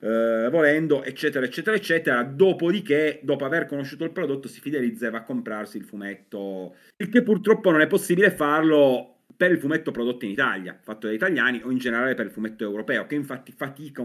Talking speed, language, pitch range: 190 wpm, Italian, 110-135 Hz